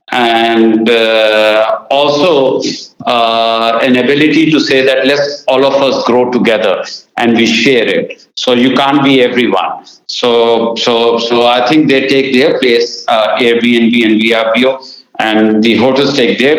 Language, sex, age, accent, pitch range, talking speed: English, male, 60-79, Indian, 125-165 Hz, 150 wpm